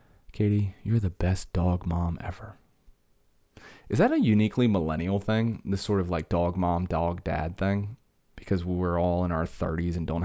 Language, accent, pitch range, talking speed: English, American, 85-110 Hz, 175 wpm